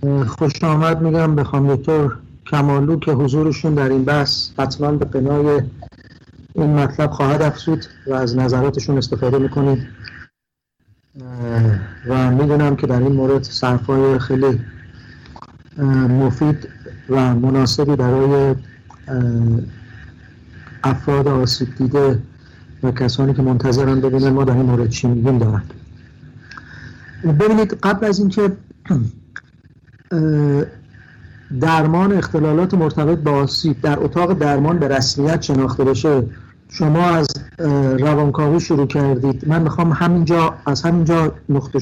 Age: 50-69